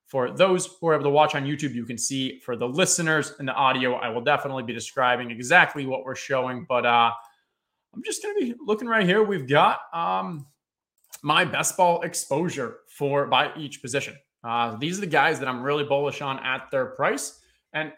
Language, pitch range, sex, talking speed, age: English, 130-180 Hz, male, 205 wpm, 20-39